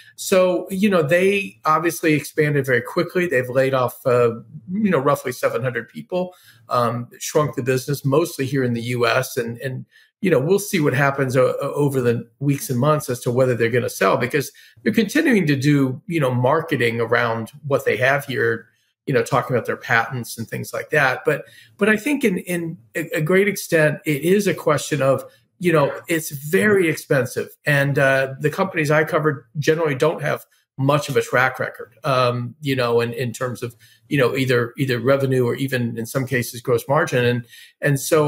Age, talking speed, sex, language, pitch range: 40-59, 195 wpm, male, English, 125-165 Hz